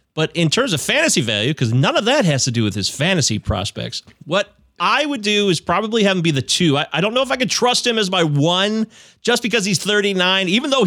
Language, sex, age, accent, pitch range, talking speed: English, male, 30-49, American, 140-210 Hz, 255 wpm